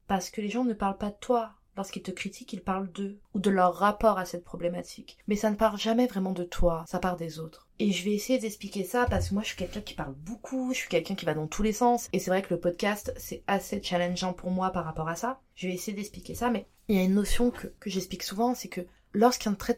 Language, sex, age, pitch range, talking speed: French, female, 20-39, 175-210 Hz, 280 wpm